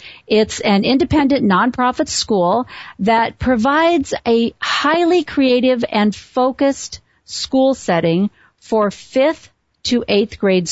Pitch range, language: 185-240 Hz, English